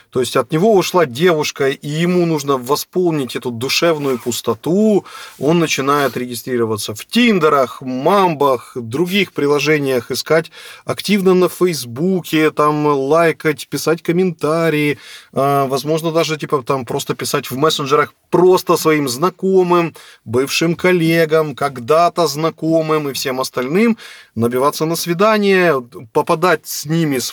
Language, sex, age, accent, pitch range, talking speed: Russian, male, 20-39, native, 130-175 Hz, 120 wpm